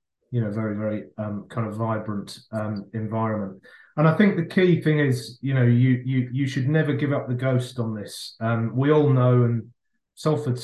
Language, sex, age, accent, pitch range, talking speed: English, male, 30-49, British, 115-130 Hz, 205 wpm